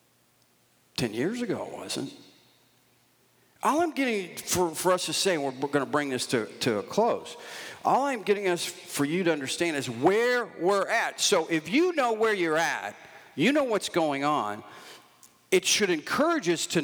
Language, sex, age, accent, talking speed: English, male, 50-69, American, 180 wpm